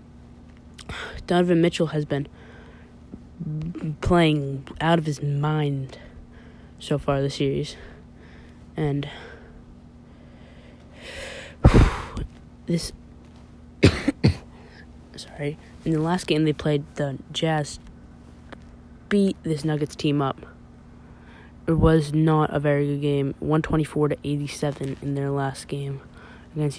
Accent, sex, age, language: American, female, 20-39, English